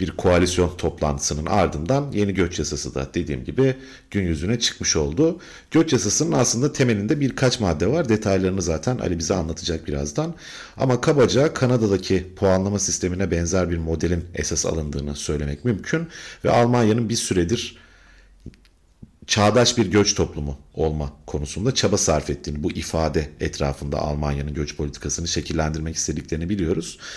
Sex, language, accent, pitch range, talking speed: male, Turkish, native, 75-110 Hz, 135 wpm